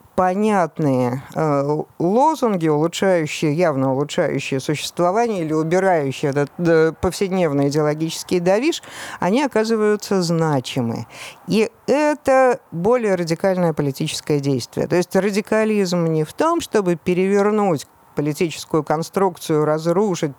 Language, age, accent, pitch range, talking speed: Russian, 50-69, native, 155-200 Hz, 95 wpm